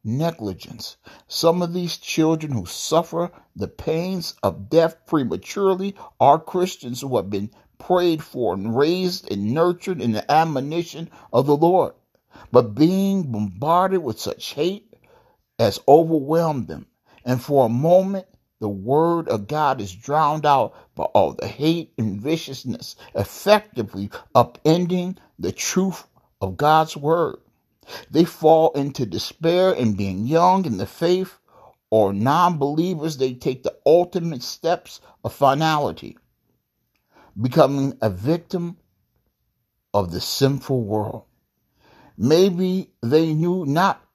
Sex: male